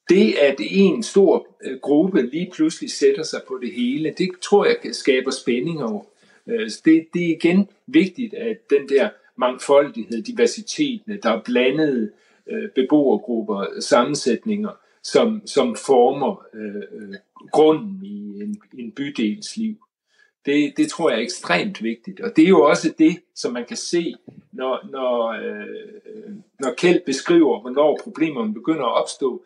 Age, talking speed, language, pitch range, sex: 60-79, 135 wpm, Danish, 145-235 Hz, male